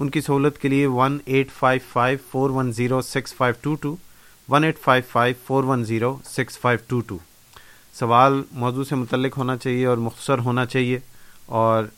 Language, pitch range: Urdu, 120-135 Hz